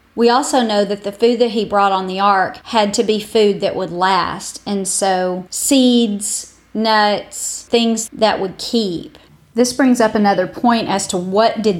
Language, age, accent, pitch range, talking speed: English, 40-59, American, 180-220 Hz, 185 wpm